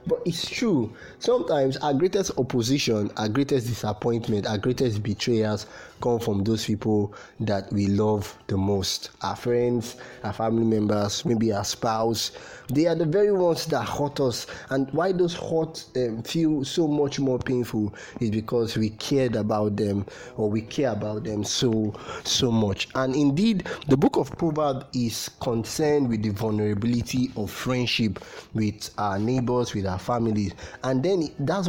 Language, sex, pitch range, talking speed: English, male, 110-145 Hz, 155 wpm